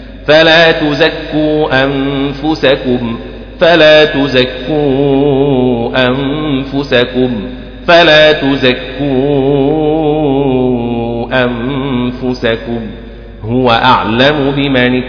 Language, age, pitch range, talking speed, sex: Arabic, 40-59, 125-150 Hz, 50 wpm, male